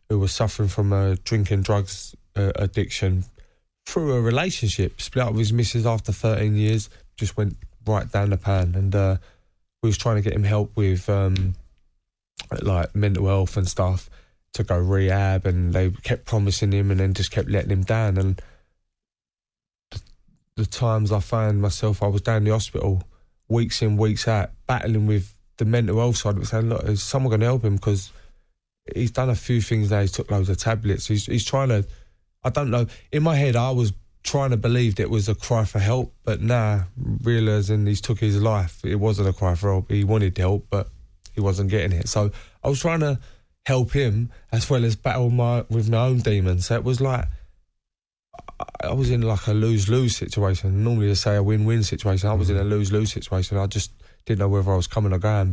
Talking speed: 210 wpm